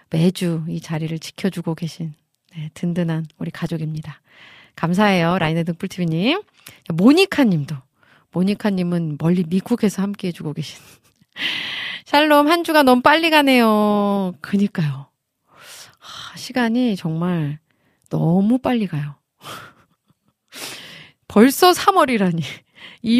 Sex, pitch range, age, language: female, 160-230 Hz, 30-49, Korean